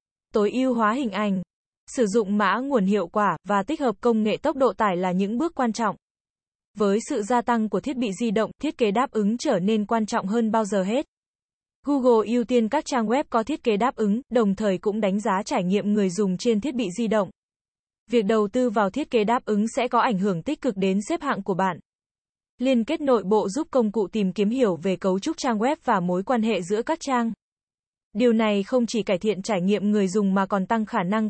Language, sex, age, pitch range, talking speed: Vietnamese, female, 10-29, 205-250 Hz, 240 wpm